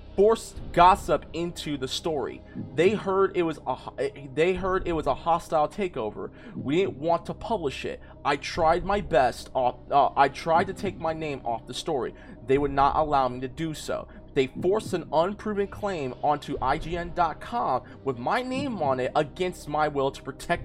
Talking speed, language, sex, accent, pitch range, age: 185 wpm, English, male, American, 135-185 Hz, 20-39